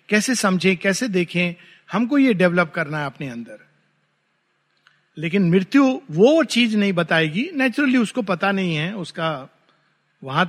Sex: male